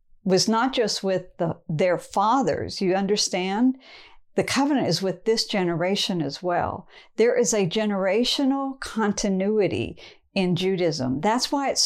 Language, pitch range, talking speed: English, 175-220 Hz, 130 wpm